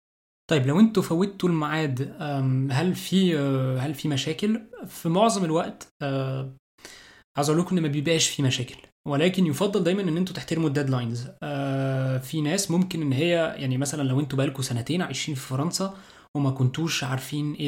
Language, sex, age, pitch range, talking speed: Arabic, male, 20-39, 135-170 Hz, 155 wpm